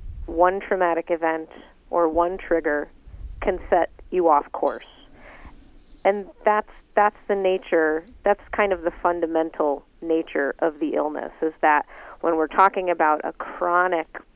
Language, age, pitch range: English, 40-59, 160-190 Hz